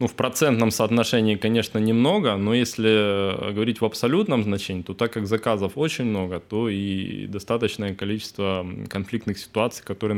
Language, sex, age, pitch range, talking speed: Ukrainian, male, 20-39, 105-125 Hz, 145 wpm